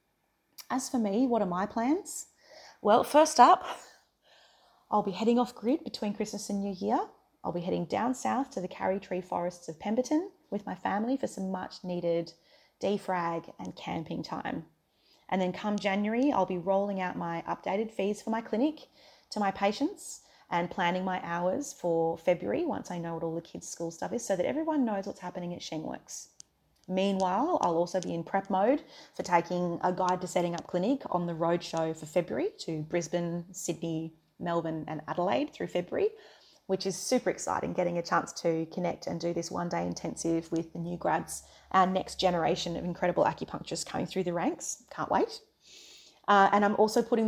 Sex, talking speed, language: female, 185 wpm, English